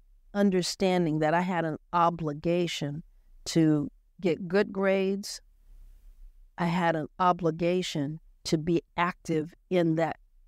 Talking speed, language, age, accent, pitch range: 110 wpm, English, 50-69, American, 160-190 Hz